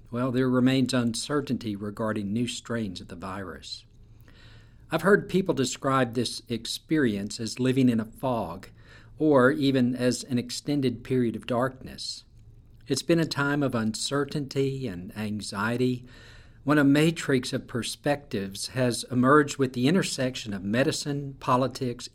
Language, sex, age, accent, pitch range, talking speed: English, male, 50-69, American, 110-135 Hz, 135 wpm